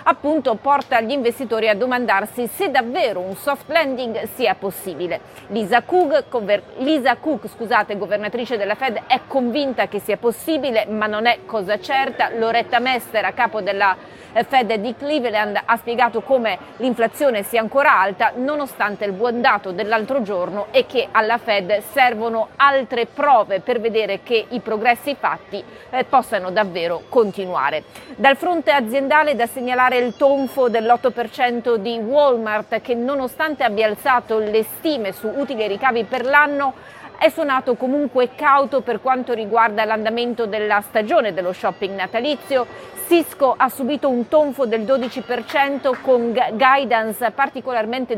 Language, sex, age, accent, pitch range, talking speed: Italian, female, 30-49, native, 220-270 Hz, 145 wpm